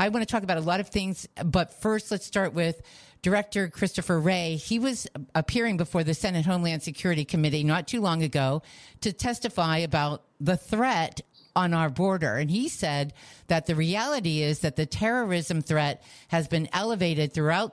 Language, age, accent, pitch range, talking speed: English, 50-69, American, 155-195 Hz, 180 wpm